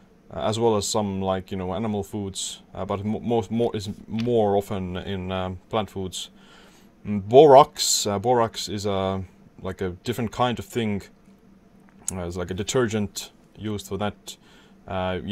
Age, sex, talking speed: 20-39, male, 160 wpm